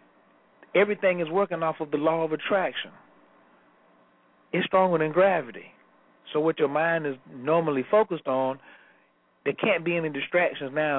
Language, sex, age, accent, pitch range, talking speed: English, male, 40-59, American, 130-170 Hz, 145 wpm